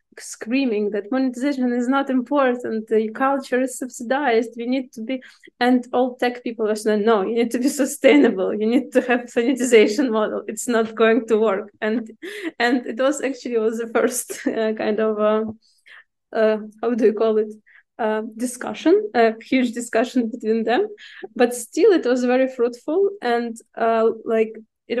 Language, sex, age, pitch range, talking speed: Bulgarian, female, 20-39, 220-250 Hz, 175 wpm